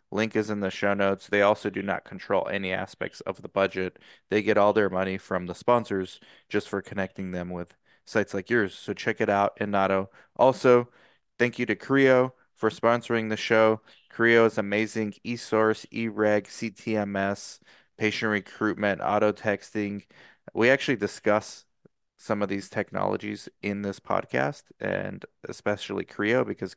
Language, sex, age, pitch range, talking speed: English, male, 20-39, 100-120 Hz, 155 wpm